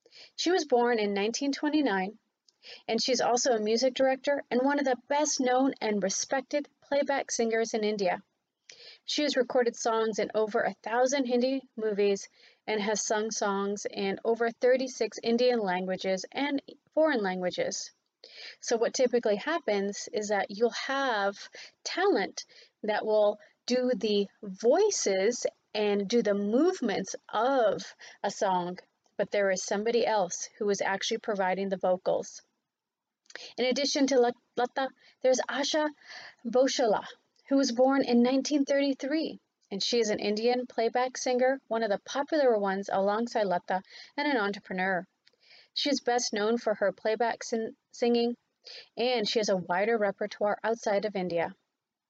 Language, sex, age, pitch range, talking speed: English, female, 30-49, 205-265 Hz, 145 wpm